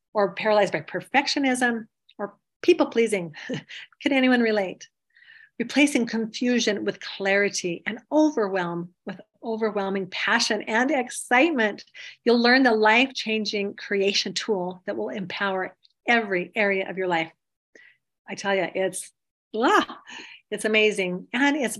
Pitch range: 195-240 Hz